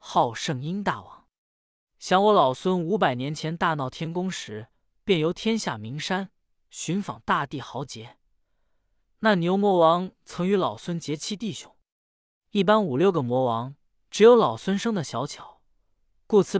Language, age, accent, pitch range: Chinese, 20-39, native, 130-210 Hz